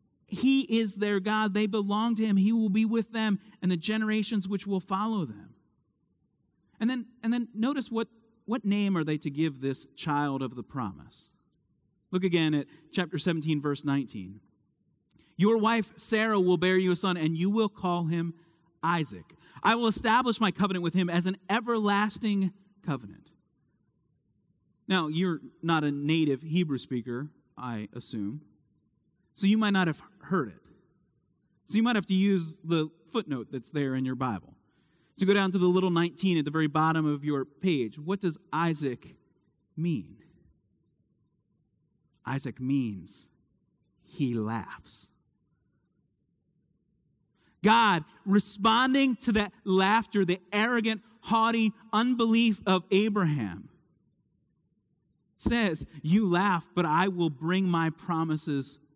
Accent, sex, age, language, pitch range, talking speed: American, male, 30-49, English, 155-215 Hz, 140 wpm